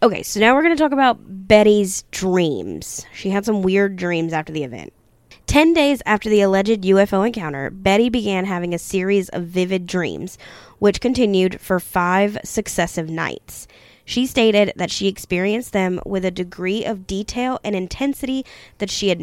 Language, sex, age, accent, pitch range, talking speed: English, female, 10-29, American, 180-225 Hz, 170 wpm